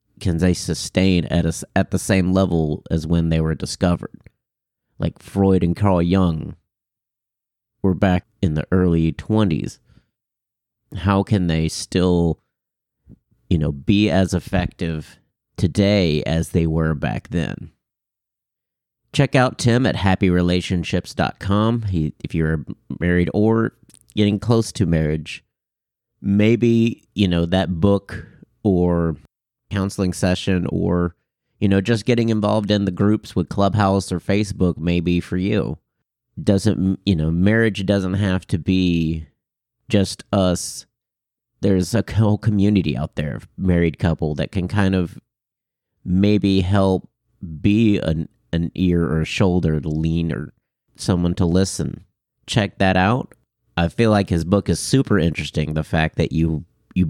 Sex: male